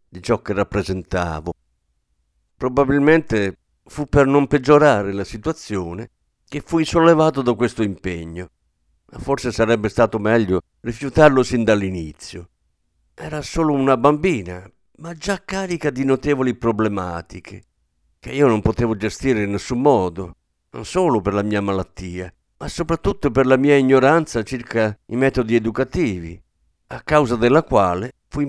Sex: male